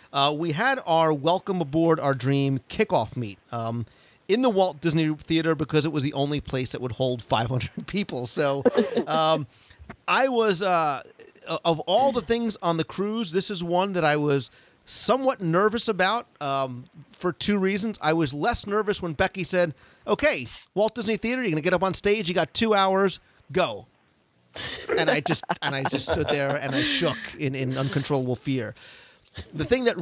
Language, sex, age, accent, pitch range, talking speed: English, male, 40-59, American, 135-190 Hz, 180 wpm